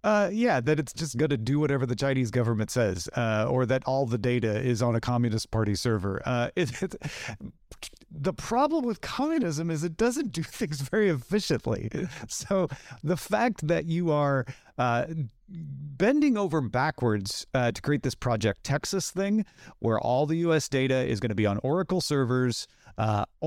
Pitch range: 120-175 Hz